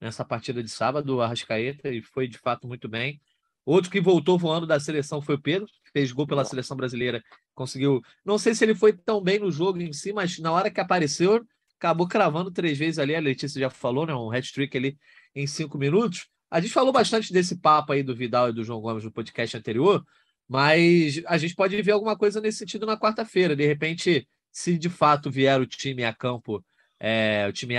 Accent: Brazilian